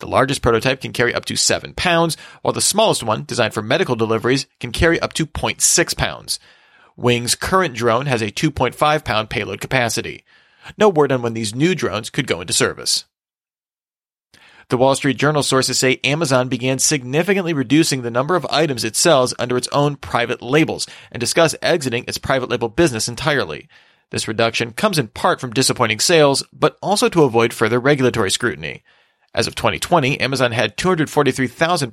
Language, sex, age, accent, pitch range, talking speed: English, male, 40-59, American, 120-150 Hz, 175 wpm